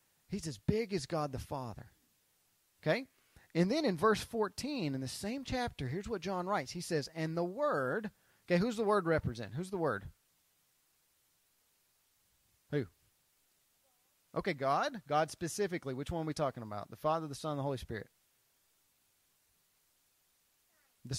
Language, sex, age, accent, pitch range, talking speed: English, male, 30-49, American, 145-205 Hz, 155 wpm